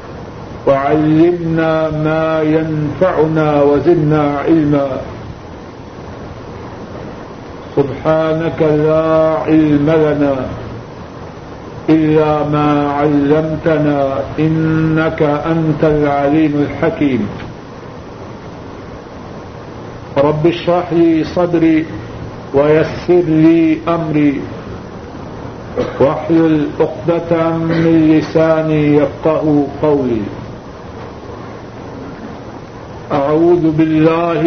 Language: Urdu